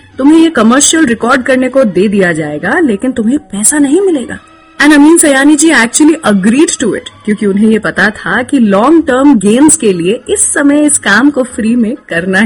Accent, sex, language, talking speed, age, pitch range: native, female, Gujarati, 195 wpm, 30-49, 195-295 Hz